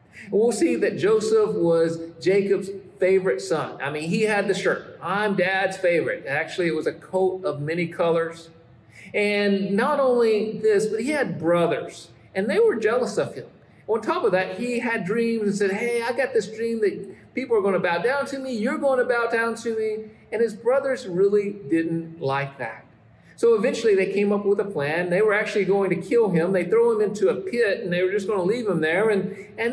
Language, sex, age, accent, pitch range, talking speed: English, male, 50-69, American, 180-235 Hz, 220 wpm